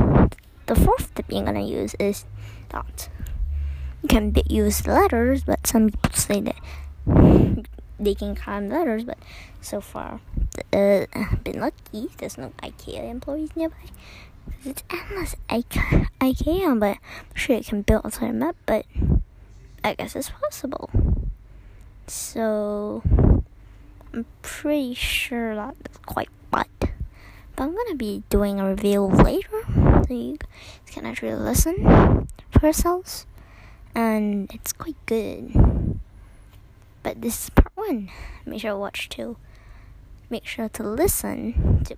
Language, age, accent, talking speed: English, 10-29, American, 135 wpm